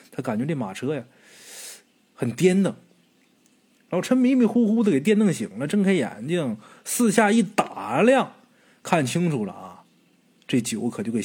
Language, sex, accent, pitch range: Chinese, male, native, 155-250 Hz